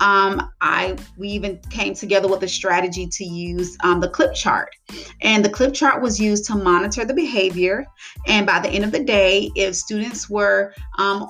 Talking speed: 190 wpm